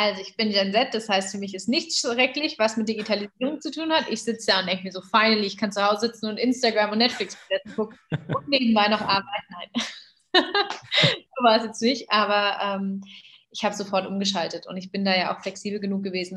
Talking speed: 220 wpm